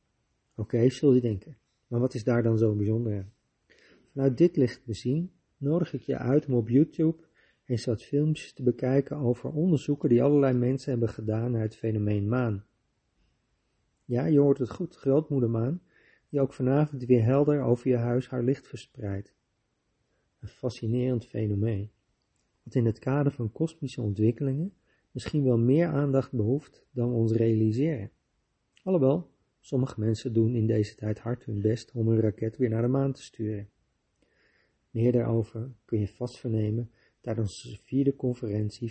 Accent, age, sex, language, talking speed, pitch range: Dutch, 40-59, male, Dutch, 160 wpm, 110-135 Hz